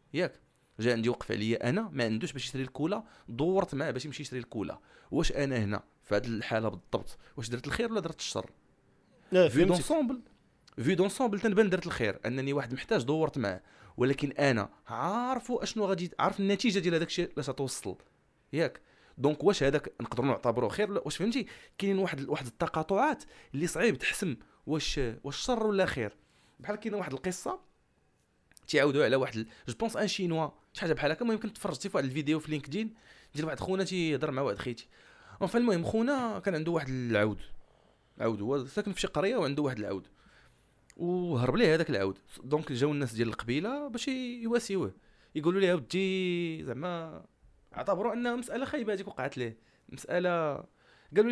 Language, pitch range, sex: Arabic, 130-200 Hz, male